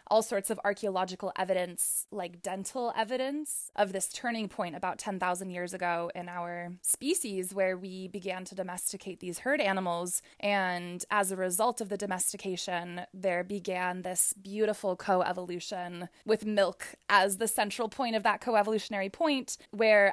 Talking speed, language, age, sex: 150 wpm, English, 20-39, female